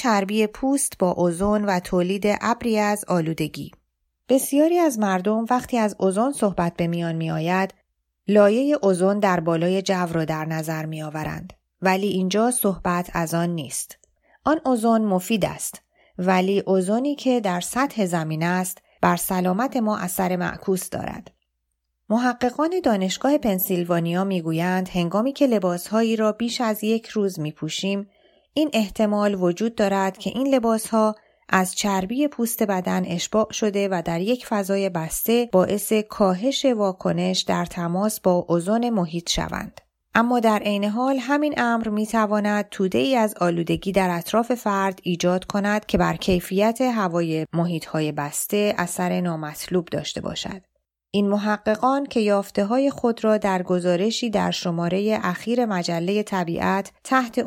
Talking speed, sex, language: 140 wpm, female, Persian